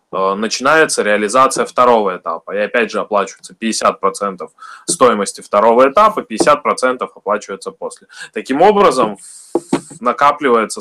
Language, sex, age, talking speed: Russian, male, 20-39, 100 wpm